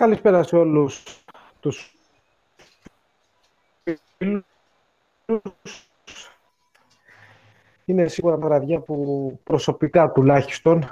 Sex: male